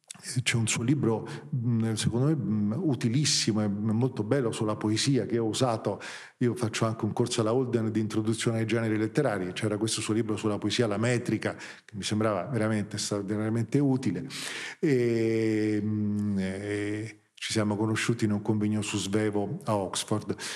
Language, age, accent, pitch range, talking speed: Italian, 40-59, native, 105-140 Hz, 155 wpm